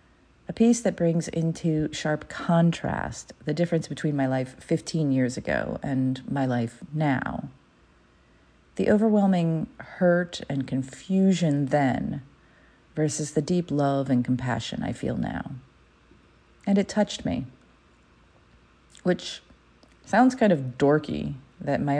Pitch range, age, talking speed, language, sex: 125-165 Hz, 40-59, 125 wpm, English, female